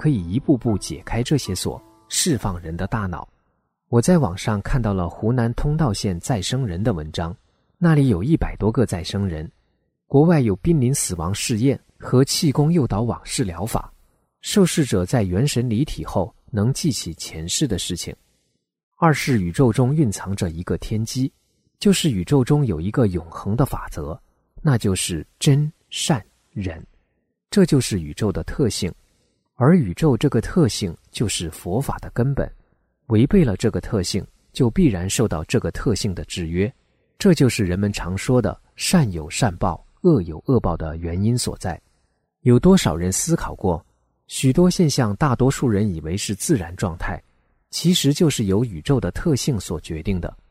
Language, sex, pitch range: Chinese, male, 90-140 Hz